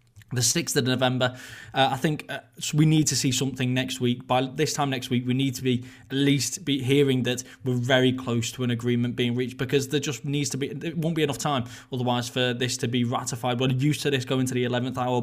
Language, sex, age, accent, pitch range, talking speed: English, male, 20-39, British, 120-135 Hz, 250 wpm